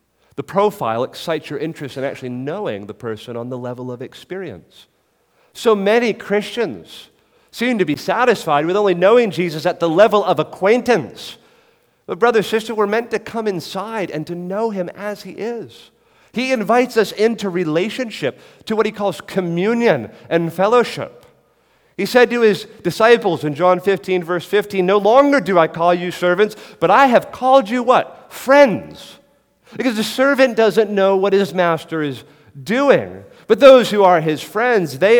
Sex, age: male, 40-59